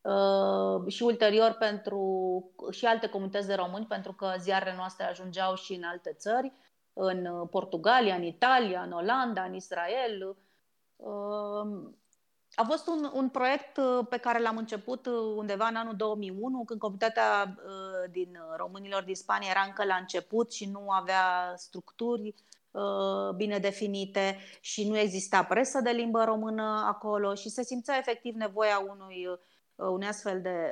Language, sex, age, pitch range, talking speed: Romanian, female, 30-49, 190-230 Hz, 140 wpm